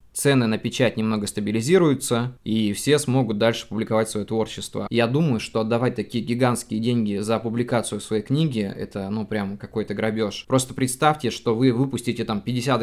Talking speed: 165 wpm